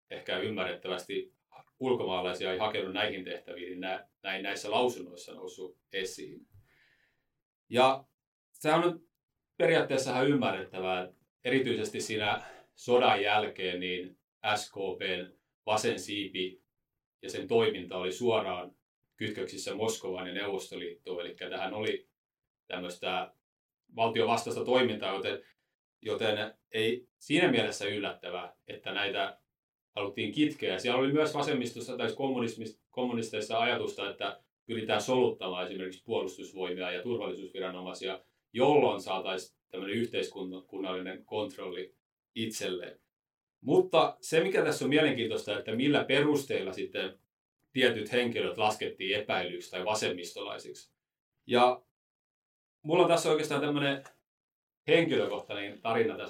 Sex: male